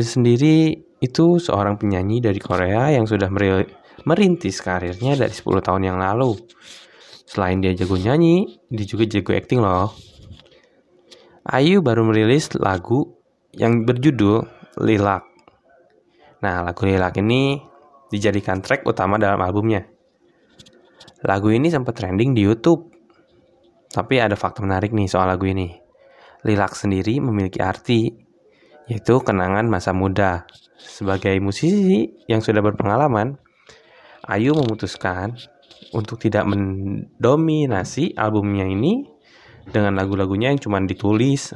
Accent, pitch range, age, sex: Indonesian, 100-120 Hz, 20-39, male